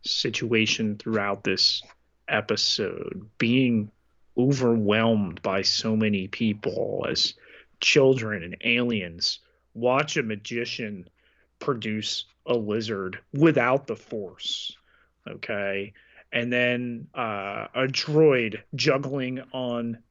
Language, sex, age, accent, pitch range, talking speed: English, male, 30-49, American, 110-145 Hz, 95 wpm